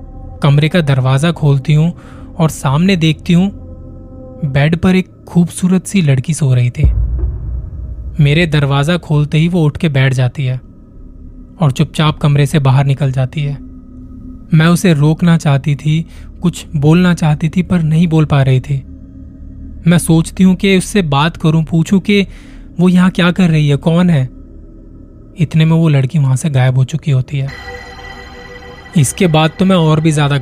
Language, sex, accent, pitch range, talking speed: Hindi, male, native, 130-170 Hz, 170 wpm